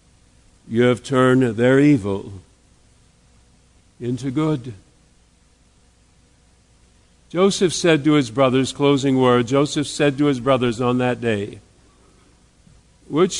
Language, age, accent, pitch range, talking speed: English, 50-69, American, 100-150 Hz, 105 wpm